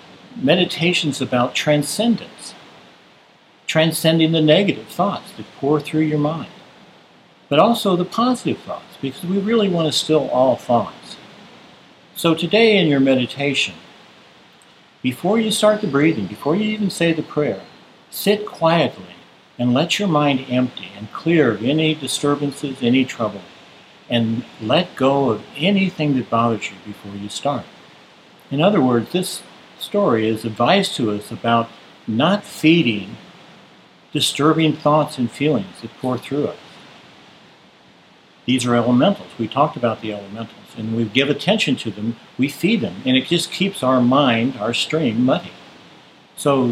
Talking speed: 145 wpm